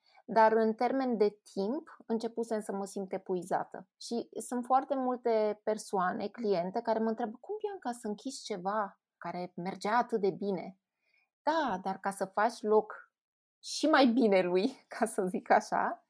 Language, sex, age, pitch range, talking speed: Romanian, female, 20-39, 195-245 Hz, 165 wpm